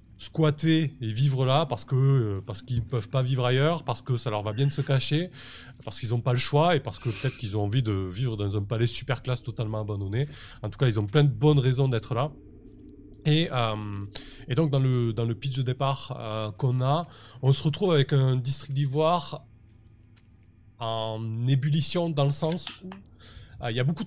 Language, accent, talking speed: French, French, 215 wpm